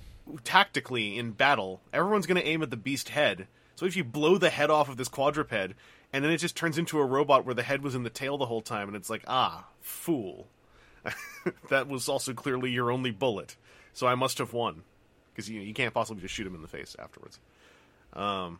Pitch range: 115-160 Hz